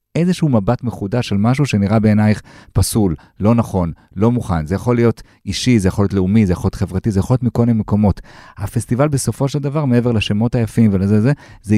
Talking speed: 205 wpm